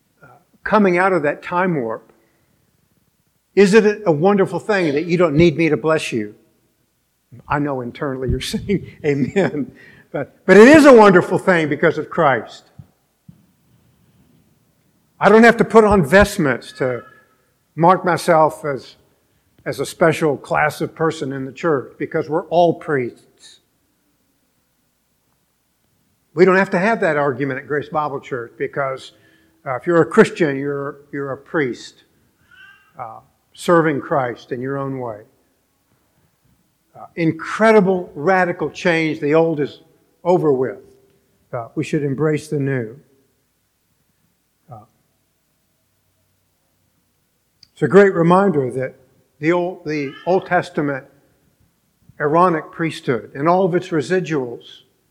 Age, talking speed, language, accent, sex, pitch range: 50-69, 130 wpm, English, American, male, 140-180 Hz